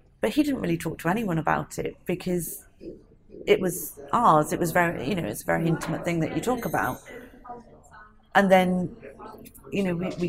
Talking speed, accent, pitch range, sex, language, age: 190 wpm, British, 150-180 Hz, female, English, 40-59